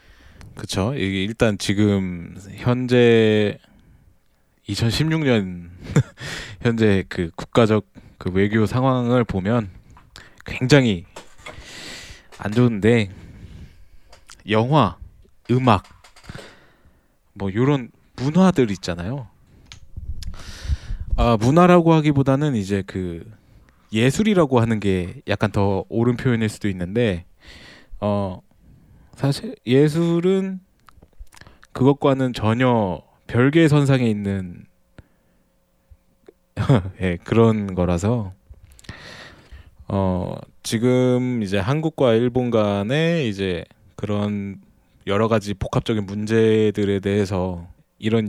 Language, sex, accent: Korean, male, native